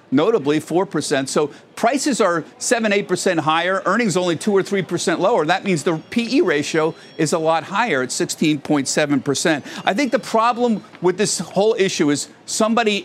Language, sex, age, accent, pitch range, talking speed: English, male, 50-69, American, 145-200 Hz, 155 wpm